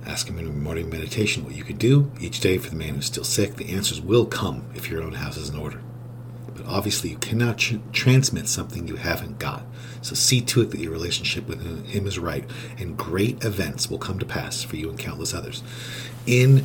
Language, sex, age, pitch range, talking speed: English, male, 40-59, 105-120 Hz, 225 wpm